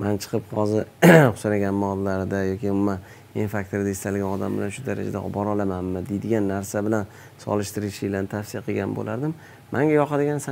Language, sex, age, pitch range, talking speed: Russian, male, 30-49, 100-120 Hz, 110 wpm